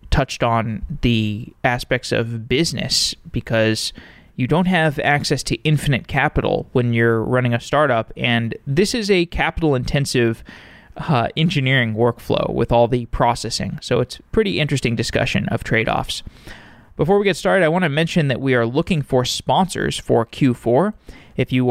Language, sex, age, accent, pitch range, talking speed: English, male, 20-39, American, 120-145 Hz, 155 wpm